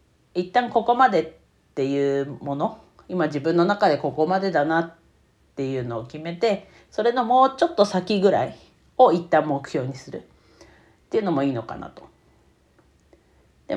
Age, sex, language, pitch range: 40-59, female, Japanese, 130-180 Hz